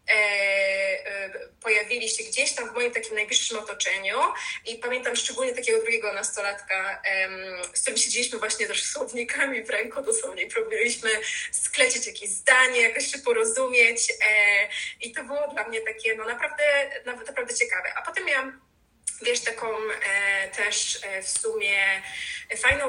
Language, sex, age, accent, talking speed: Polish, female, 20-39, native, 145 wpm